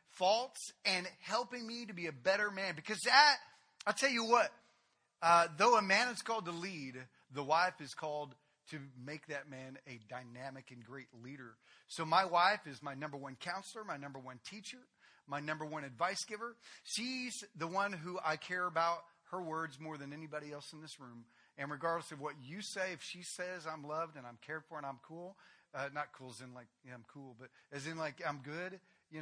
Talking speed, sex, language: 210 wpm, male, English